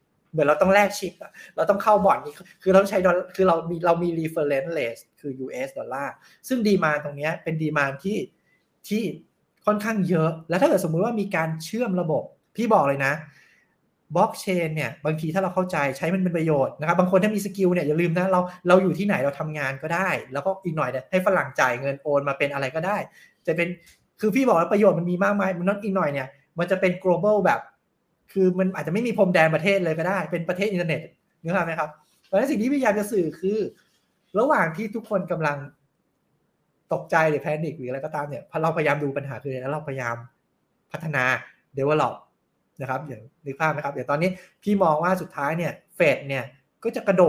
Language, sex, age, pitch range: Thai, male, 20-39, 150-190 Hz